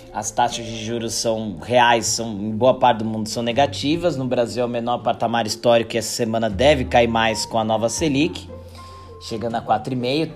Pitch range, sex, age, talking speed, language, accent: 115-155 Hz, male, 20-39, 185 wpm, Portuguese, Brazilian